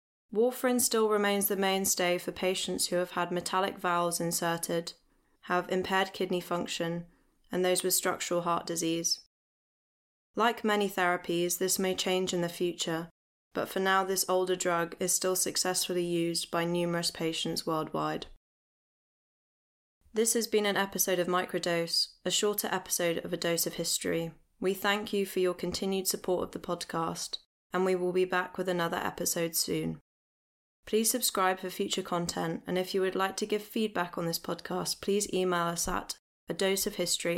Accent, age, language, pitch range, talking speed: British, 10-29, English, 170-190 Hz, 160 wpm